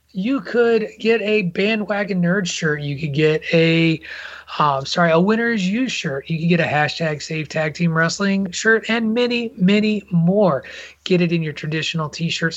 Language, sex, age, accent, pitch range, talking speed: English, male, 30-49, American, 155-205 Hz, 175 wpm